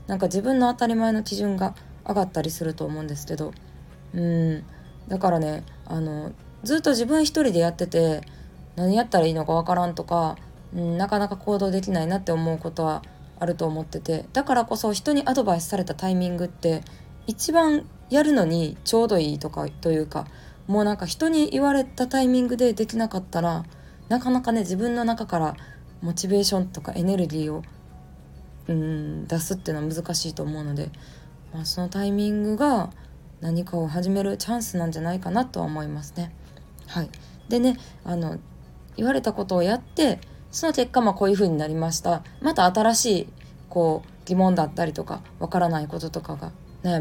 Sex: female